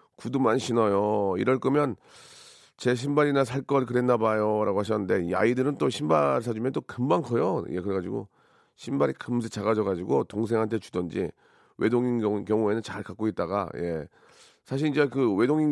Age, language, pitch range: 40-59, Korean, 100-135 Hz